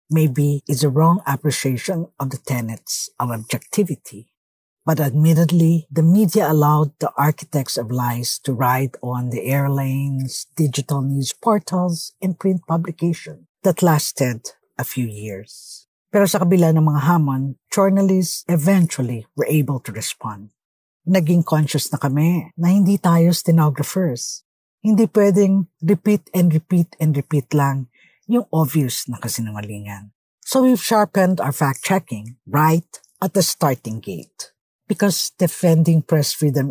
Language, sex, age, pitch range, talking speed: English, female, 50-69, 130-180 Hz, 130 wpm